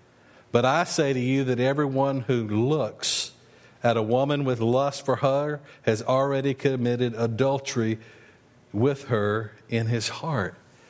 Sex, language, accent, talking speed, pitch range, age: male, English, American, 140 wpm, 125-170 Hz, 50-69